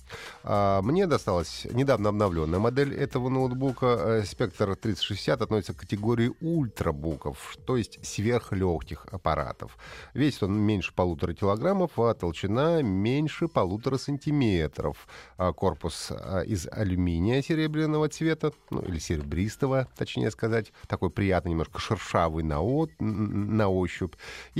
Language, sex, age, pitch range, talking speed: Russian, male, 30-49, 90-125 Hz, 105 wpm